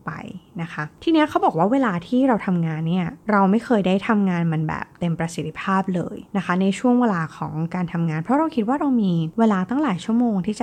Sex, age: female, 20-39